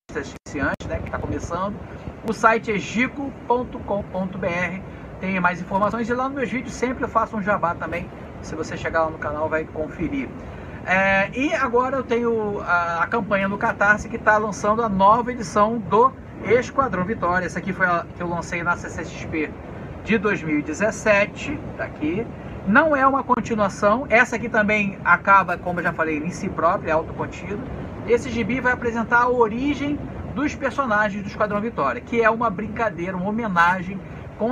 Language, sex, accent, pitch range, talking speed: Portuguese, male, Brazilian, 180-230 Hz, 170 wpm